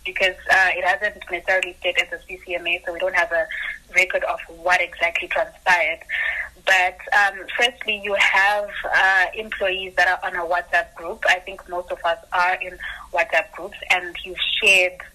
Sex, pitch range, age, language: female, 175-200 Hz, 20-39, English